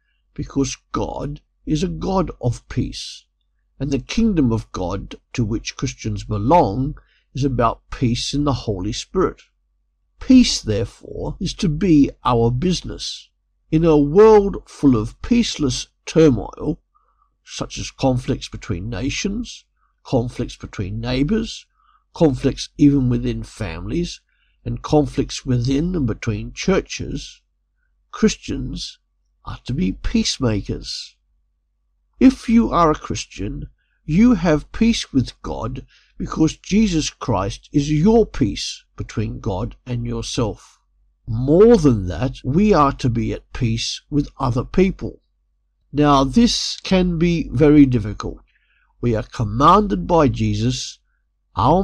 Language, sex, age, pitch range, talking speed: English, male, 50-69, 115-170 Hz, 120 wpm